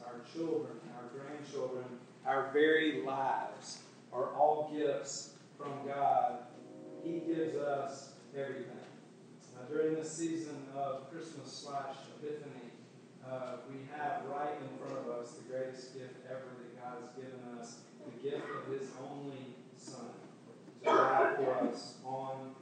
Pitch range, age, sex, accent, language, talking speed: 135-185 Hz, 40-59, male, American, English, 135 wpm